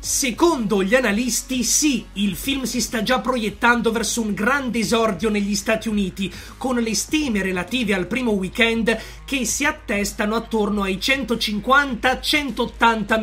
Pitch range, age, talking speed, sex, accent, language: 210-250 Hz, 30-49, 135 wpm, male, native, Italian